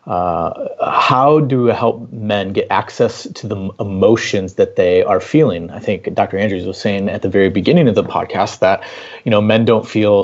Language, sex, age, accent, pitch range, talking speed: English, male, 30-49, American, 95-120 Hz, 200 wpm